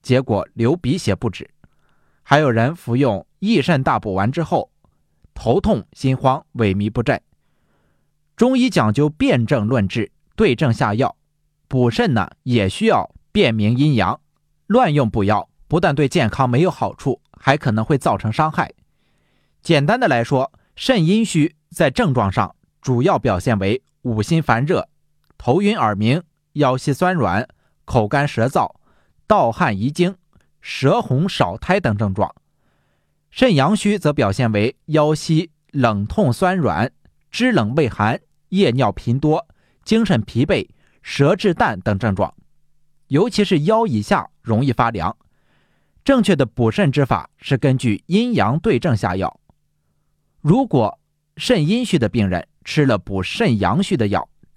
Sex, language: male, Chinese